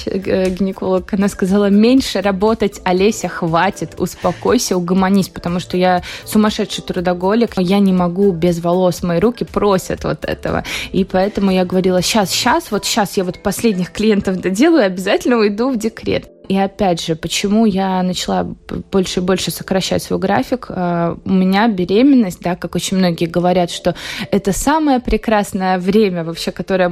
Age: 20-39